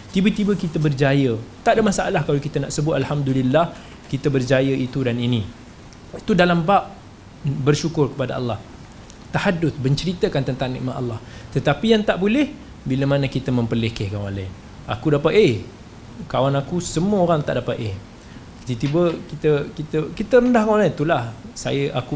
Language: Malay